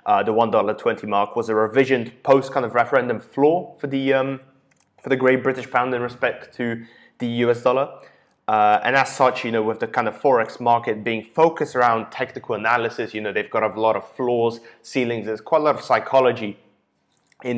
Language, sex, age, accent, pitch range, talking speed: English, male, 20-39, British, 110-130 Hz, 200 wpm